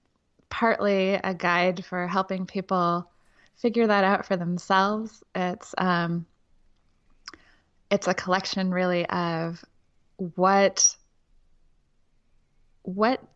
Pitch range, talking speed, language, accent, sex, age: 175-200 Hz, 90 wpm, English, American, female, 20-39